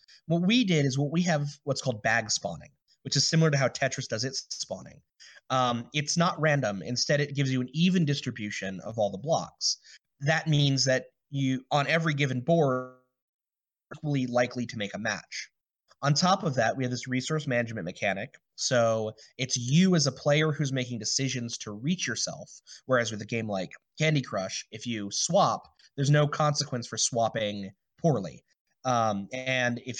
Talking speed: 180 wpm